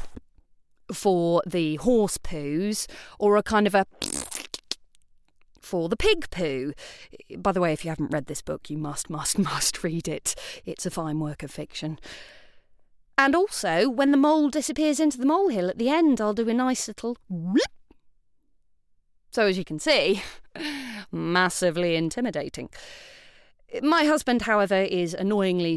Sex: female